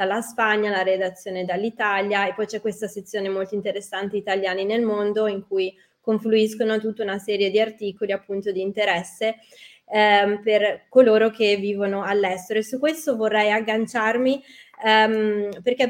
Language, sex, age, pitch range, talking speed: Italian, female, 20-39, 200-230 Hz, 145 wpm